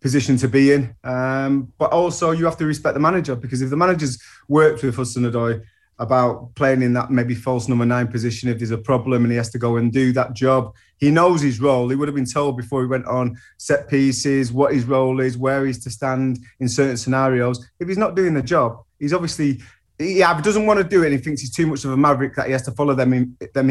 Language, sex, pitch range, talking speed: English, male, 125-145 Hz, 250 wpm